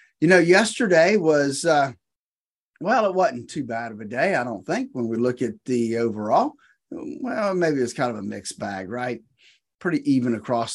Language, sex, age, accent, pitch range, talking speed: English, male, 40-59, American, 120-175 Hz, 195 wpm